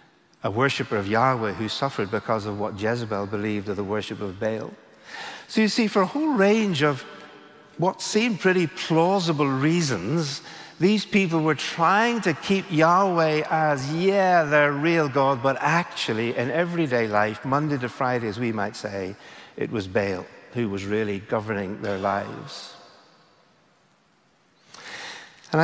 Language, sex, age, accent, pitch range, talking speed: English, male, 60-79, British, 115-165 Hz, 145 wpm